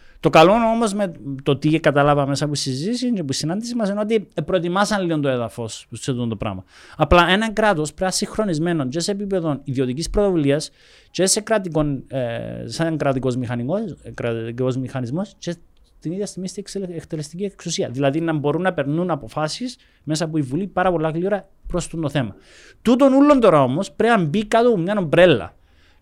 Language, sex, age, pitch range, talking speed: Greek, male, 30-49, 135-195 Hz, 175 wpm